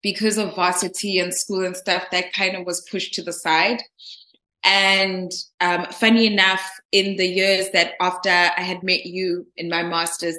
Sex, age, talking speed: female, 20-39, 180 wpm